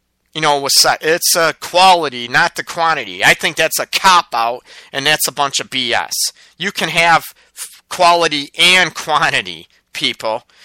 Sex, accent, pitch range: male, American, 130-180 Hz